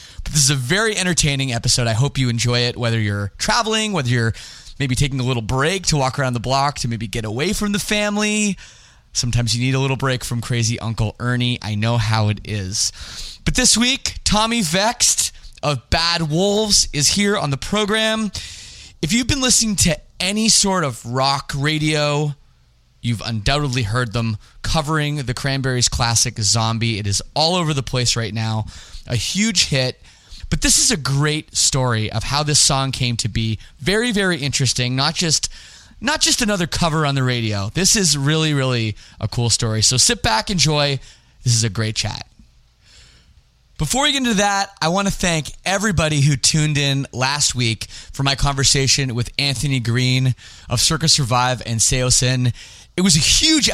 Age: 20-39